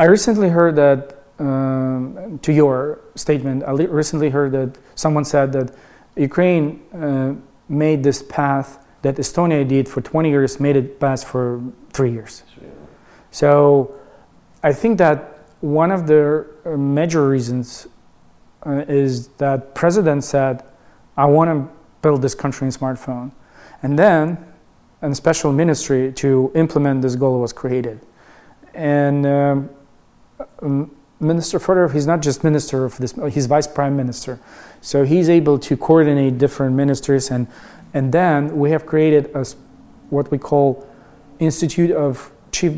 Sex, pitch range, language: male, 135-155 Hz, English